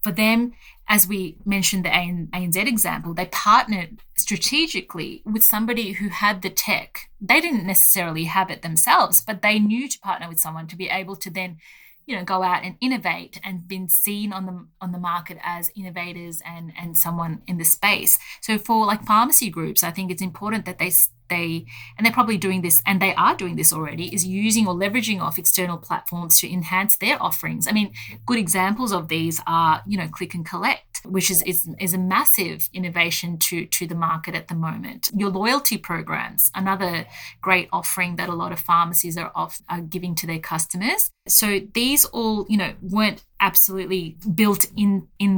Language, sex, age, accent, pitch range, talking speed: English, female, 30-49, Australian, 175-210 Hz, 190 wpm